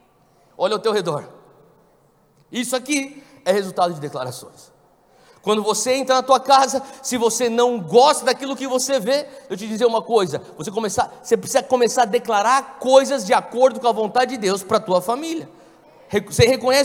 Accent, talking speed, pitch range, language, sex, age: Brazilian, 180 wpm, 190-260 Hz, Portuguese, male, 50-69